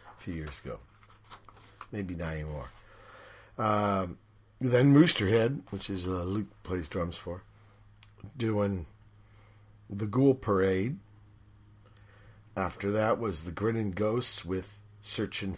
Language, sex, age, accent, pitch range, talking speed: English, male, 50-69, American, 95-110 Hz, 105 wpm